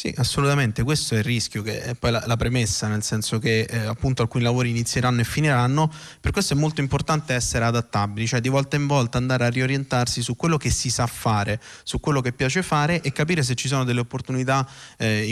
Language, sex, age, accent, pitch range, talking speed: Italian, male, 30-49, native, 120-145 Hz, 220 wpm